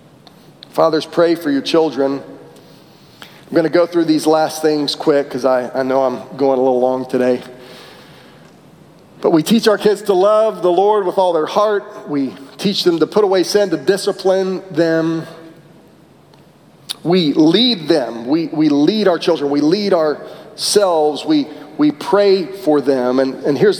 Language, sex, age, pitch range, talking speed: English, male, 40-59, 165-240 Hz, 170 wpm